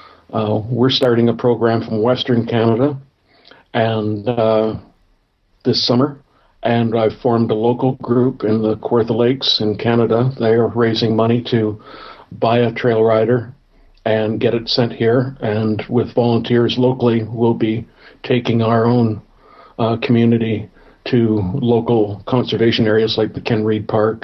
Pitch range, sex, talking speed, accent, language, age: 110-120 Hz, male, 145 wpm, American, English, 60-79